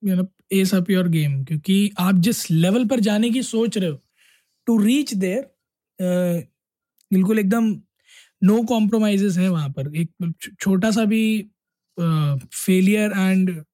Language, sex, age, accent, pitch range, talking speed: Hindi, male, 20-39, native, 175-205 Hz, 110 wpm